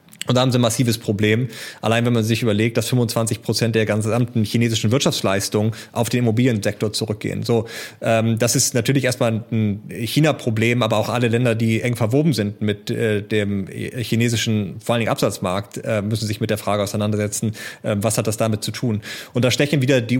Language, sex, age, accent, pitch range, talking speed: German, male, 30-49, German, 110-125 Hz, 195 wpm